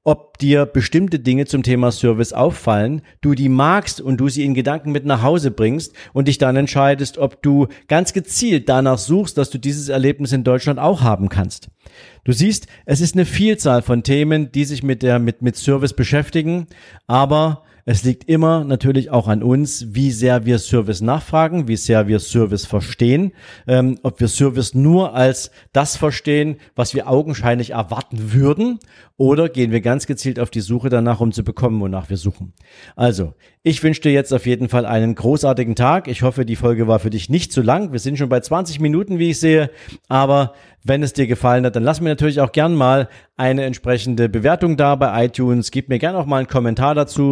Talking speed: 200 wpm